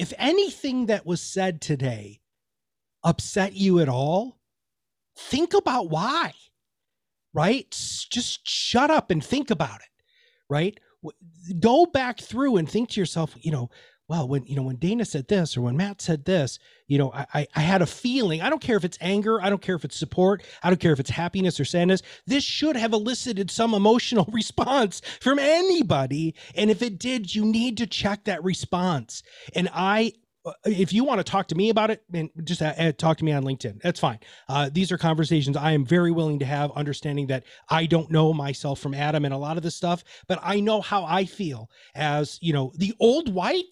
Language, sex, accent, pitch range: English, male, American, 155-220 Hz